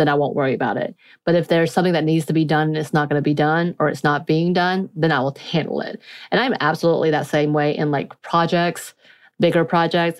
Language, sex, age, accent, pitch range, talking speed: English, female, 30-49, American, 150-175 Hz, 255 wpm